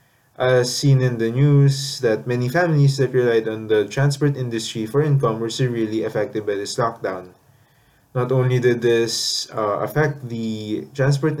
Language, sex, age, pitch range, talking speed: English, male, 20-39, 115-140 Hz, 160 wpm